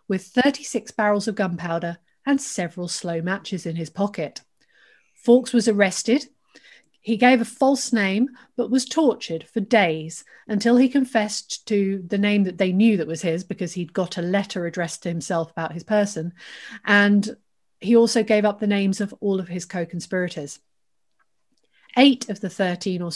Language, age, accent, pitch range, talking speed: English, 40-59, British, 175-235 Hz, 170 wpm